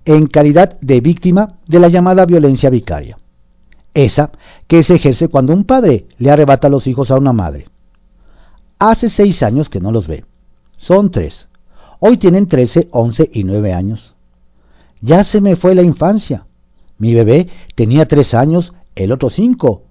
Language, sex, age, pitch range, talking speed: Spanish, male, 50-69, 100-165 Hz, 160 wpm